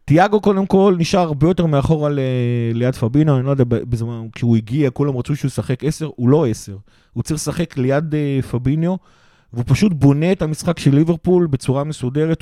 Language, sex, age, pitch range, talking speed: Hebrew, male, 30-49, 120-155 Hz, 205 wpm